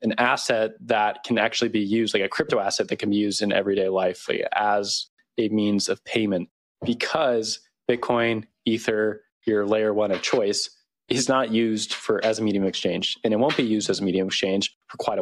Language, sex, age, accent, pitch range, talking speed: English, male, 20-39, American, 100-115 Hz, 210 wpm